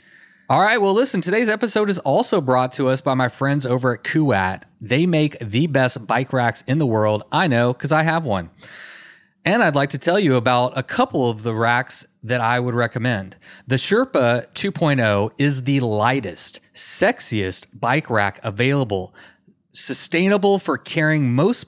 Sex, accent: male, American